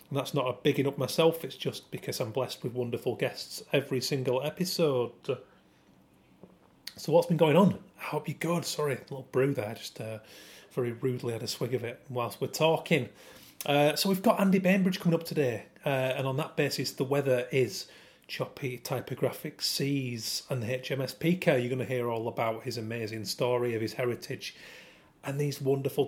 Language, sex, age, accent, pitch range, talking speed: English, male, 30-49, British, 125-145 Hz, 190 wpm